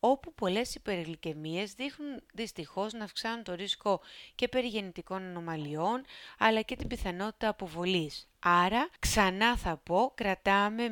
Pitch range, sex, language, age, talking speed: 175-220 Hz, female, Greek, 30-49, 120 wpm